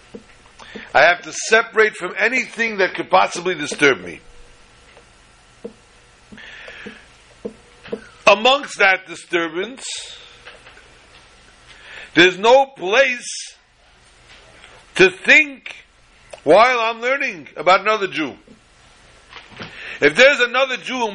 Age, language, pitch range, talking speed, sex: 60-79, English, 175-235 Hz, 85 wpm, male